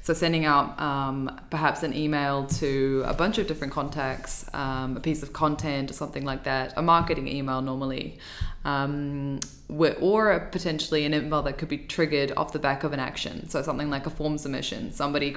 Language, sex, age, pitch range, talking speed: Finnish, female, 20-39, 135-155 Hz, 190 wpm